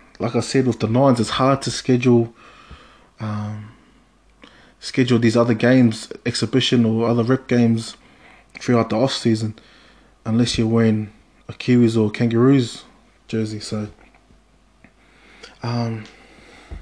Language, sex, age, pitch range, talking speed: English, male, 20-39, 115-130 Hz, 120 wpm